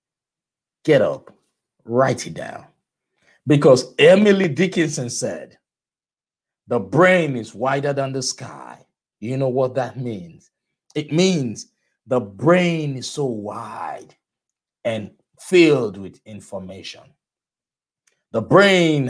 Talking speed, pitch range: 105 wpm, 110-145 Hz